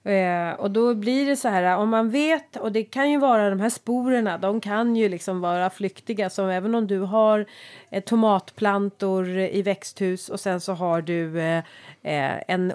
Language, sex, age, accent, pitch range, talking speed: Swedish, female, 30-49, native, 185-225 Hz, 175 wpm